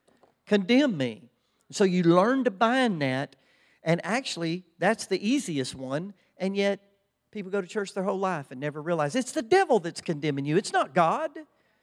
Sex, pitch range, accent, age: male, 165-260 Hz, American, 50-69